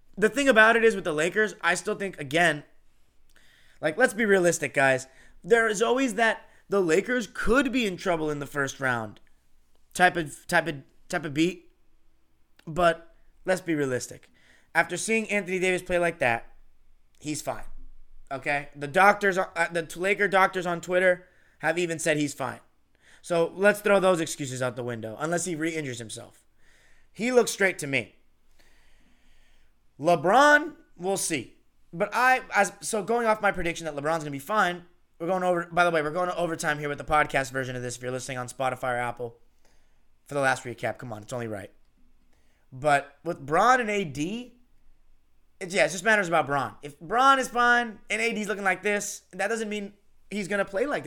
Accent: American